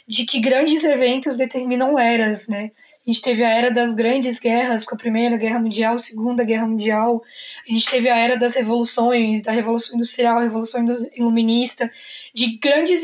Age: 10-29